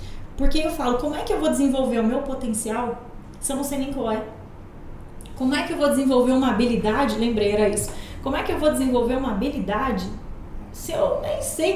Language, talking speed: Portuguese, 215 wpm